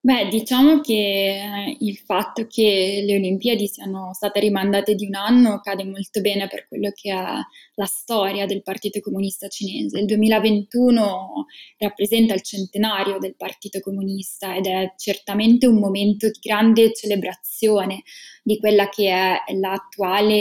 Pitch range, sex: 195-220 Hz, female